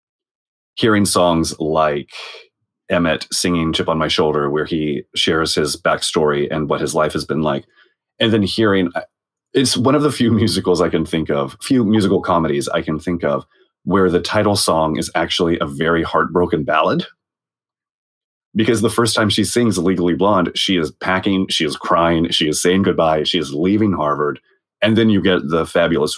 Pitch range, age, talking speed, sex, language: 85-110 Hz, 30-49, 180 wpm, male, English